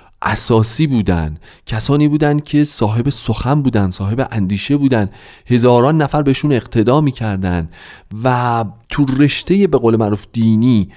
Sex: male